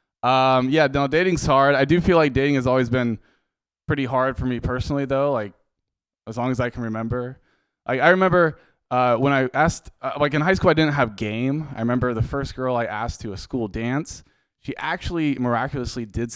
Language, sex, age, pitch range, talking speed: English, male, 20-39, 110-145 Hz, 210 wpm